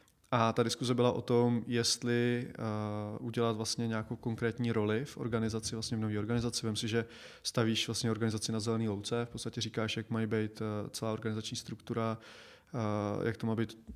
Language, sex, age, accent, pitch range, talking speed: Czech, male, 20-39, native, 110-120 Hz, 185 wpm